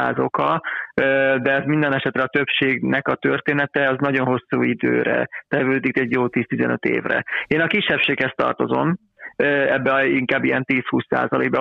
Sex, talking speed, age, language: male, 140 wpm, 30-49, Hungarian